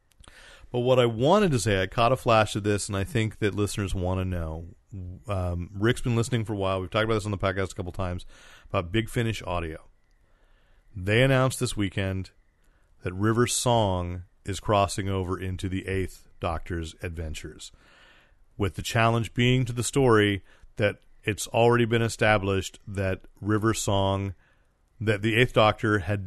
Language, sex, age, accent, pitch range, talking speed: English, male, 40-59, American, 95-115 Hz, 175 wpm